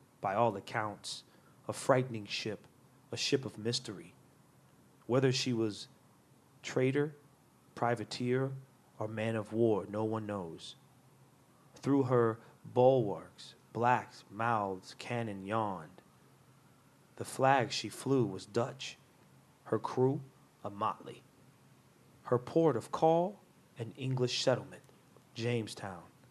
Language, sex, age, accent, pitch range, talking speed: English, male, 30-49, American, 105-135 Hz, 105 wpm